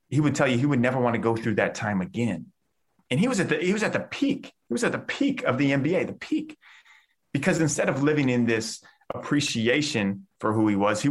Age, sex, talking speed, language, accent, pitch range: 30-49, male, 250 wpm, English, American, 105-140 Hz